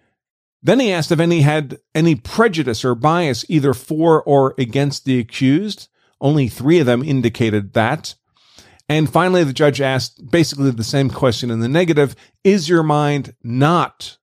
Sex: male